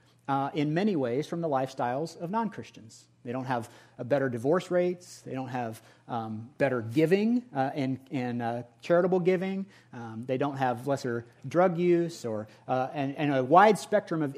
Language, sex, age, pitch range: English, male, 40-59, 120-175 Hz